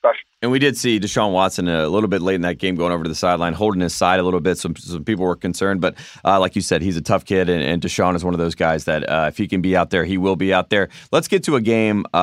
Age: 30-49